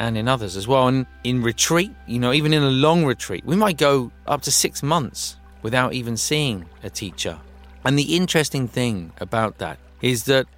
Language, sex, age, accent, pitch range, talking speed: English, male, 30-49, British, 100-140 Hz, 200 wpm